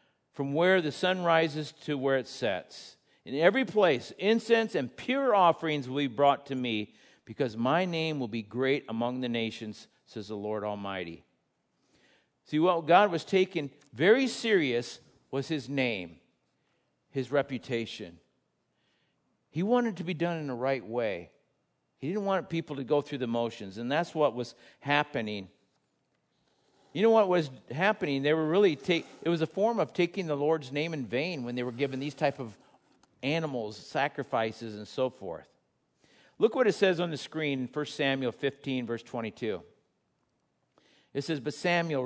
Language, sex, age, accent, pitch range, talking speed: English, male, 50-69, American, 125-165 Hz, 170 wpm